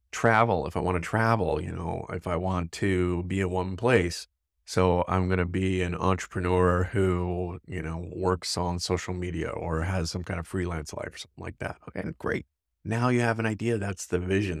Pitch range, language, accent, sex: 80-95 Hz, English, American, male